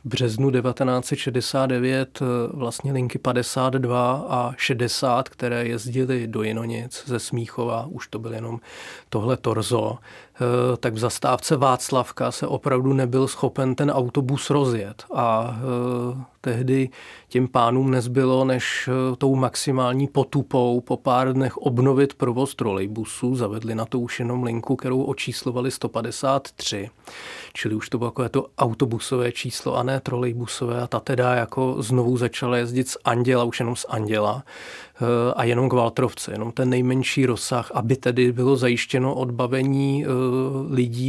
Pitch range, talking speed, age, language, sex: 120-130 Hz, 135 wpm, 40-59, Czech, male